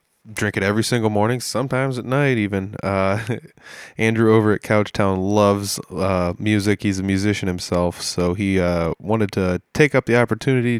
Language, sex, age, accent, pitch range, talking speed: English, male, 20-39, American, 105-125 Hz, 165 wpm